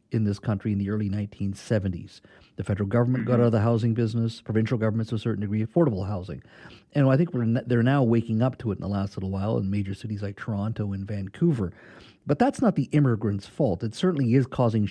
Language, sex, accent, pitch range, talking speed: English, male, American, 105-135 Hz, 220 wpm